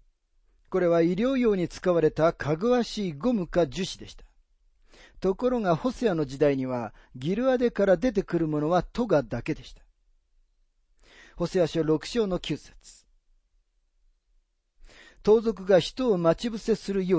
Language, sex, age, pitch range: Japanese, male, 40-59, 125-195 Hz